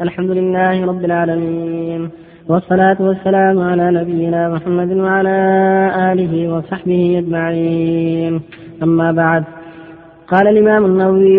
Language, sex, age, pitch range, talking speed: Arabic, female, 20-39, 170-195 Hz, 95 wpm